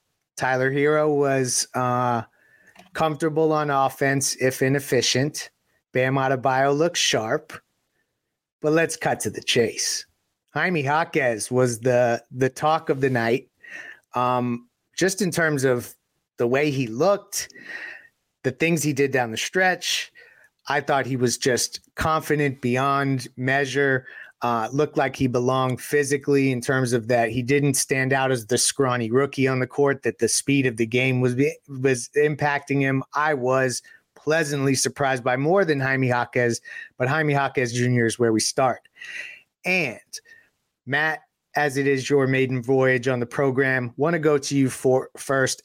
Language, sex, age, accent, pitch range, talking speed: English, male, 30-49, American, 125-150 Hz, 155 wpm